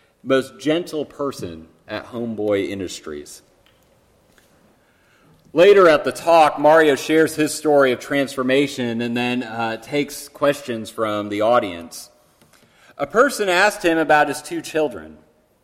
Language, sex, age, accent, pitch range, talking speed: English, male, 40-59, American, 110-150 Hz, 125 wpm